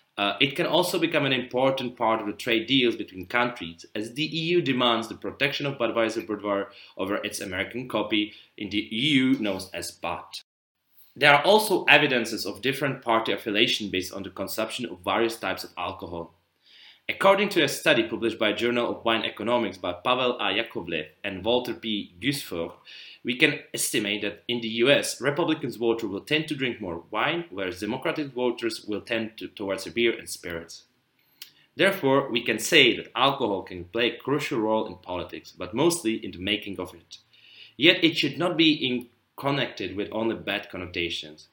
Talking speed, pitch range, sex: 180 wpm, 105-135 Hz, male